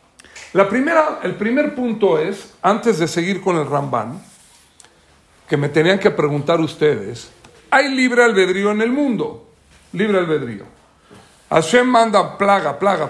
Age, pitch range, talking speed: 50-69, 170-235 Hz, 140 wpm